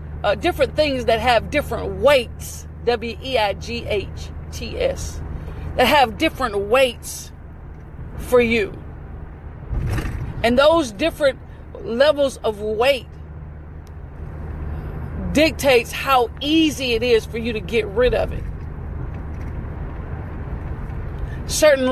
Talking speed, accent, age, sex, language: 90 wpm, American, 50-69, female, English